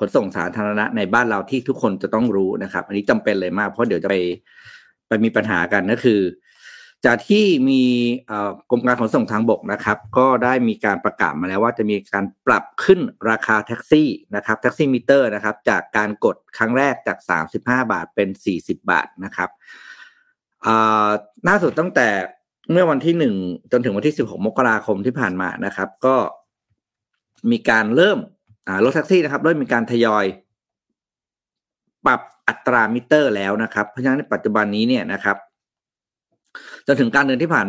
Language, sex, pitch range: Thai, male, 105-130 Hz